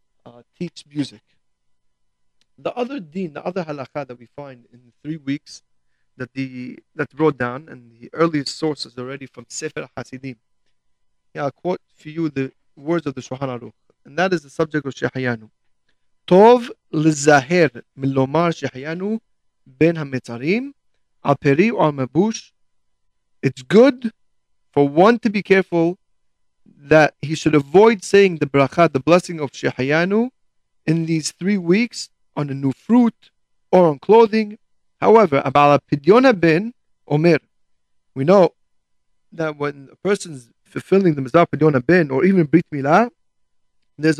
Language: English